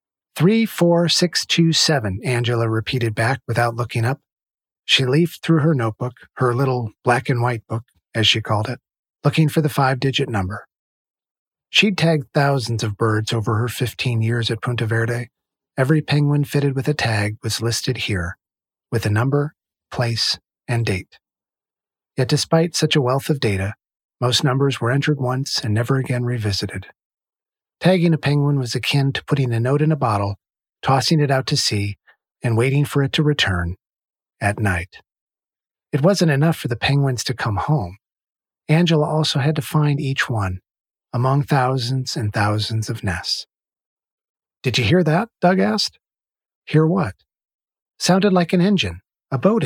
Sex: male